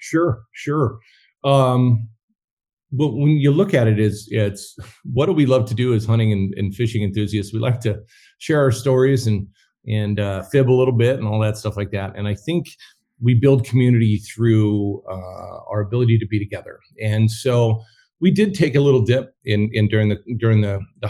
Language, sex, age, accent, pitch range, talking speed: English, male, 40-59, American, 100-120 Hz, 200 wpm